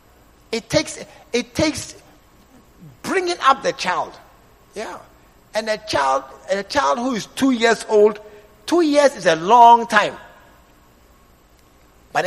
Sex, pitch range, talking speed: male, 170-270 Hz, 125 wpm